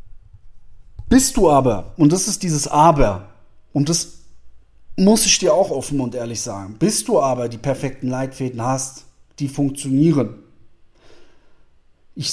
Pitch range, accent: 120-150 Hz, German